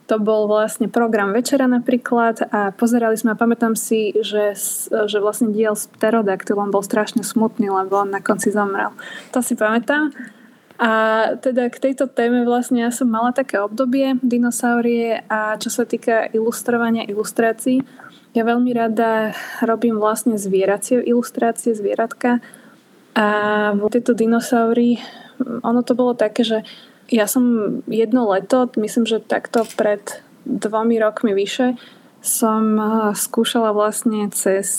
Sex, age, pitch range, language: female, 20-39, 215-245 Hz, Slovak